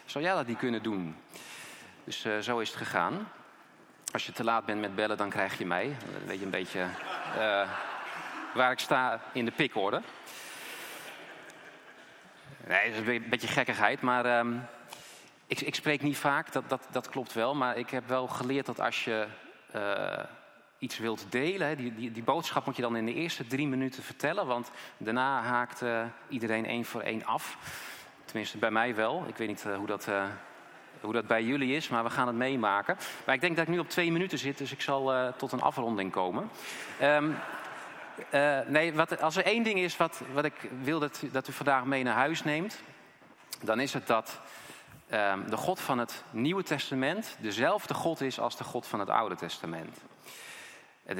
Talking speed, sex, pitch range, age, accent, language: 190 wpm, male, 110-140 Hz, 30-49, Dutch, Dutch